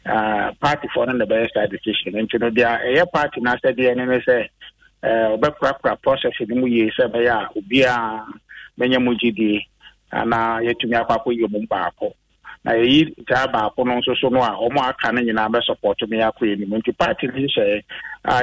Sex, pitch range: male, 110-125 Hz